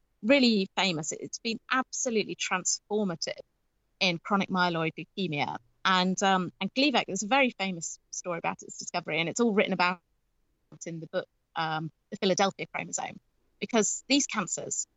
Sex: female